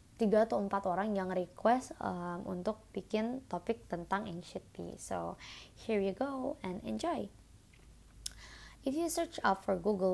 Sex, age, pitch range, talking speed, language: female, 20-39, 175-210 Hz, 140 wpm, English